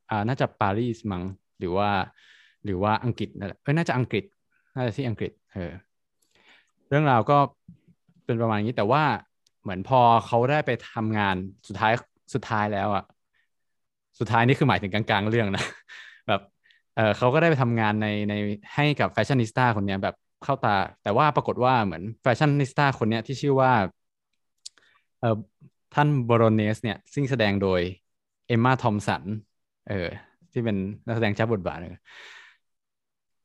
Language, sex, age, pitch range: Thai, male, 20-39, 100-125 Hz